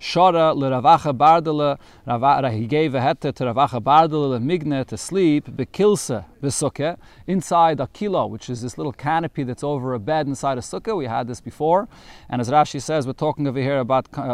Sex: male